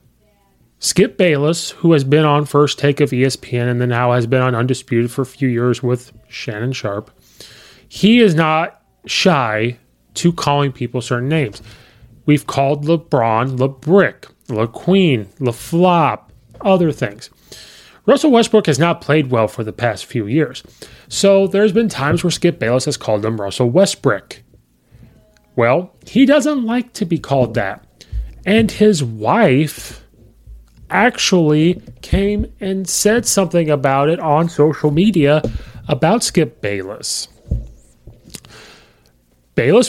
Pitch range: 120-165 Hz